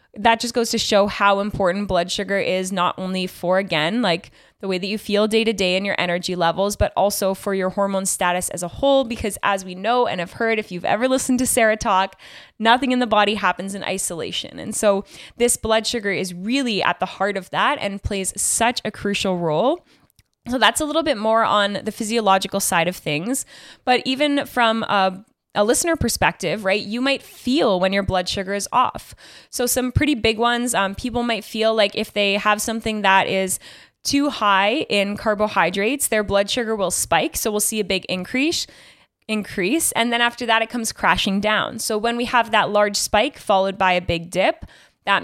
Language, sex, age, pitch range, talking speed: English, female, 10-29, 195-235 Hz, 210 wpm